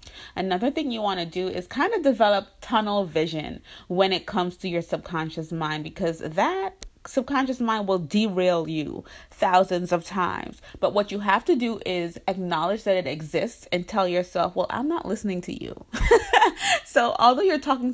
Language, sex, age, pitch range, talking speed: English, female, 30-49, 175-225 Hz, 175 wpm